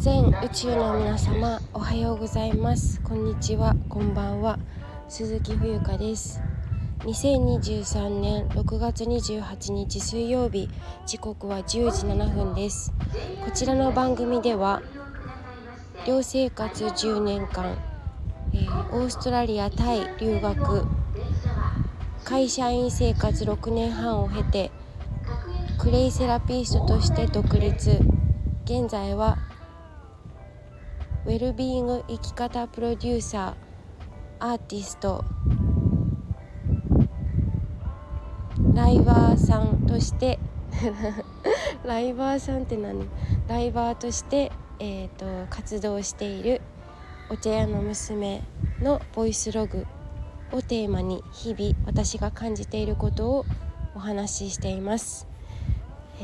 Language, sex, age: Japanese, female, 20-39